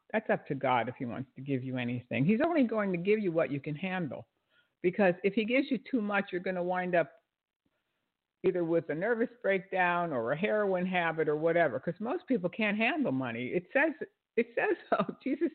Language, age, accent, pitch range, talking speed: English, 60-79, American, 140-220 Hz, 215 wpm